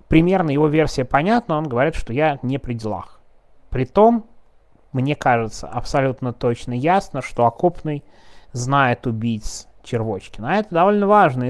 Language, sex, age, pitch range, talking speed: Russian, male, 20-39, 115-135 Hz, 135 wpm